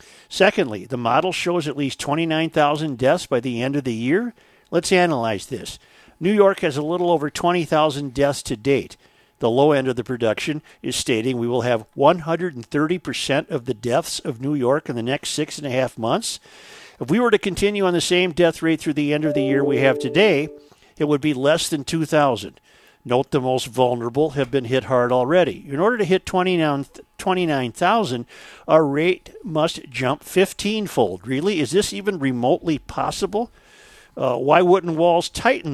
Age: 50-69